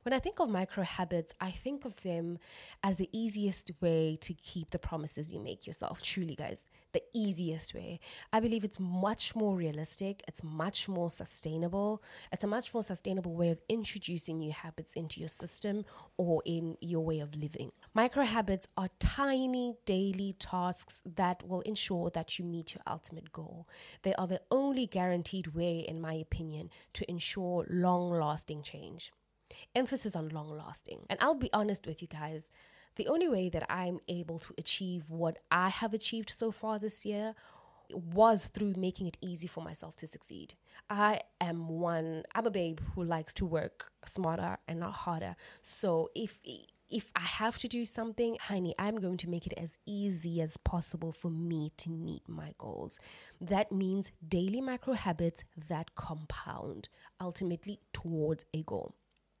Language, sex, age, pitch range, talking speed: English, female, 20-39, 165-205 Hz, 170 wpm